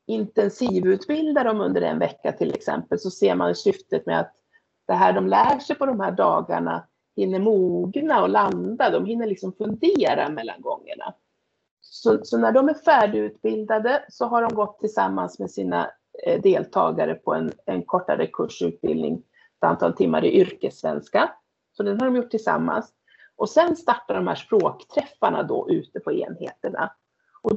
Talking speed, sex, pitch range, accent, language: 160 wpm, female, 215-305 Hz, native, Swedish